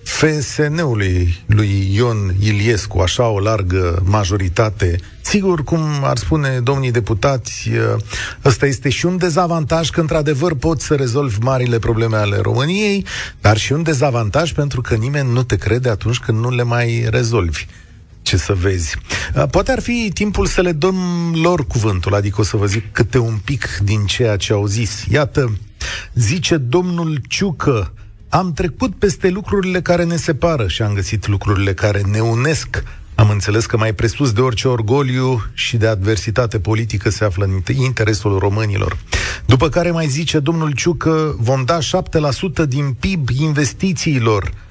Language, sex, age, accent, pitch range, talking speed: Romanian, male, 40-59, native, 105-155 Hz, 155 wpm